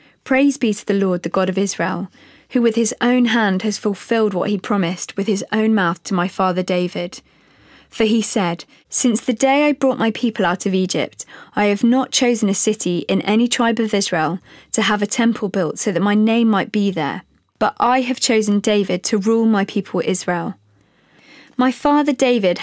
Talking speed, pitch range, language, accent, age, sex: 200 wpm, 185-235 Hz, English, British, 20-39, female